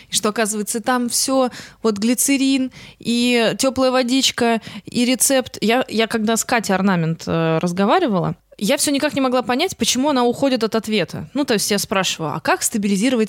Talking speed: 170 wpm